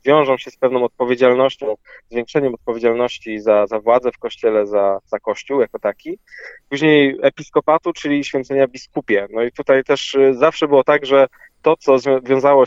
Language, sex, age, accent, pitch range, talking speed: Polish, male, 20-39, native, 120-150 Hz, 155 wpm